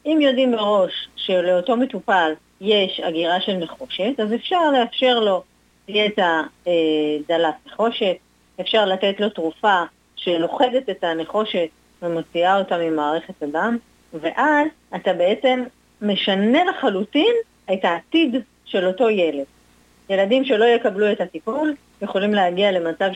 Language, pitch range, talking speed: Hebrew, 175-235 Hz, 115 wpm